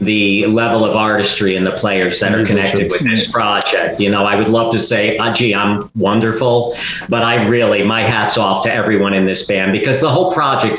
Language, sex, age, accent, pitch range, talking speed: English, male, 50-69, American, 105-130 Hz, 210 wpm